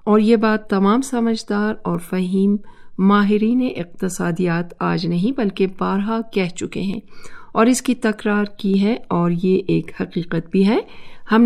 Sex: female